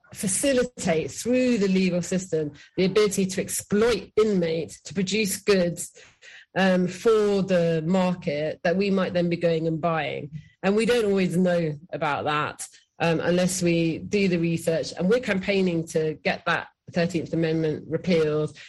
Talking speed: 150 wpm